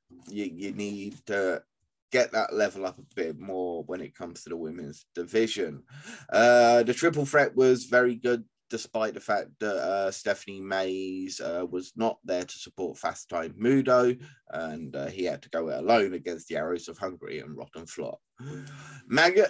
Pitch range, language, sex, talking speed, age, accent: 100-130 Hz, English, male, 180 wpm, 30-49, British